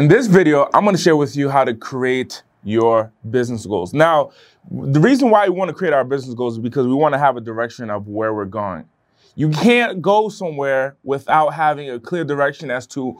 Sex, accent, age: male, American, 20-39